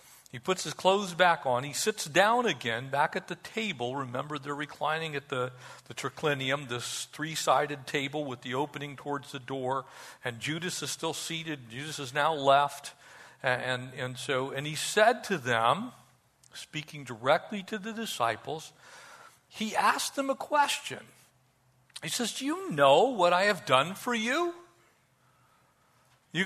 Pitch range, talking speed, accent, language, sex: 135-220 Hz, 155 wpm, American, English, male